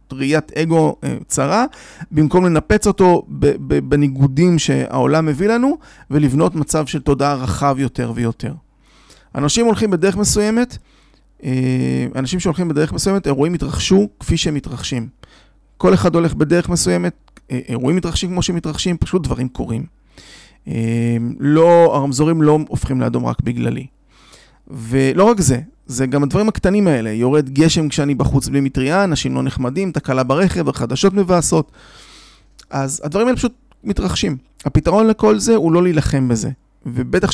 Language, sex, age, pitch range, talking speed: Hebrew, male, 30-49, 130-175 Hz, 130 wpm